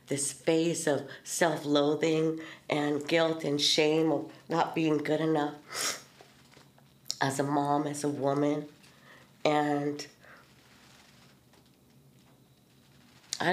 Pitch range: 150-175 Hz